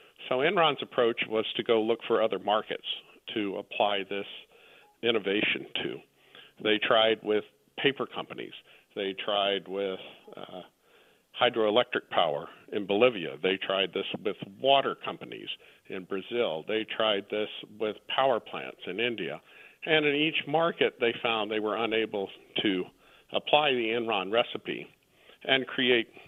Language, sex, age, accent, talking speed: English, male, 50-69, American, 135 wpm